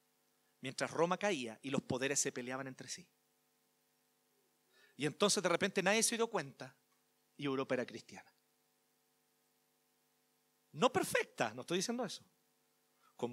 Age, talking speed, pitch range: 40-59, 130 wpm, 145-230 Hz